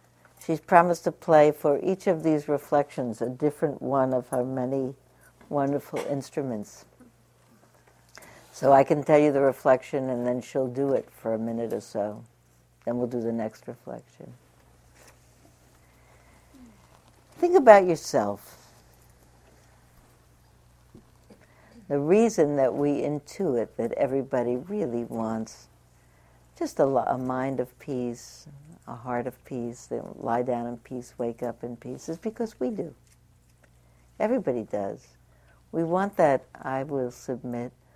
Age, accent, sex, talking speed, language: 60-79, American, female, 130 wpm, English